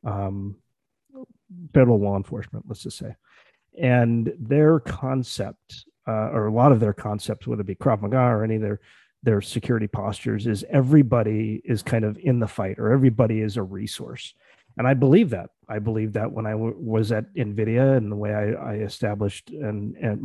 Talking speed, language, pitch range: 185 wpm, English, 110-125 Hz